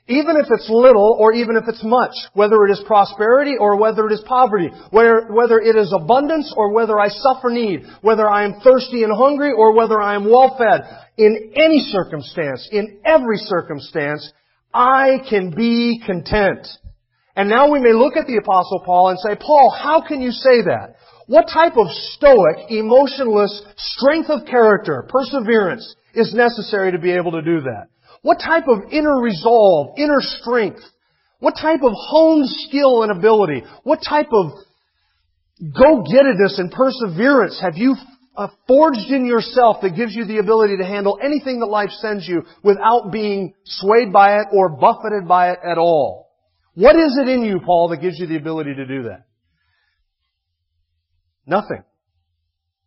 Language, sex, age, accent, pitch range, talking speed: English, male, 40-59, American, 180-255 Hz, 165 wpm